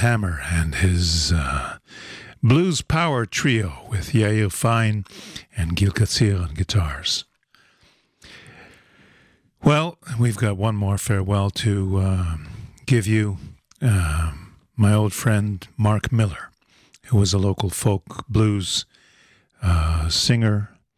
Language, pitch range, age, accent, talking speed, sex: English, 95-115 Hz, 50-69, American, 110 wpm, male